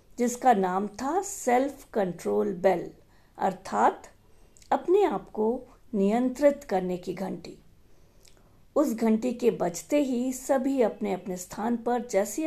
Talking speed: 120 wpm